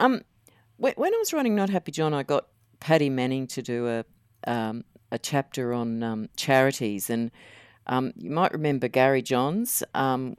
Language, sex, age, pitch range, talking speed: English, female, 50-69, 140-205 Hz, 160 wpm